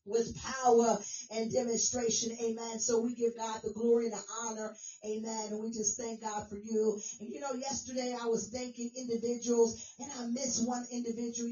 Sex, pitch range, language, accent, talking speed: female, 230-270 Hz, English, American, 180 wpm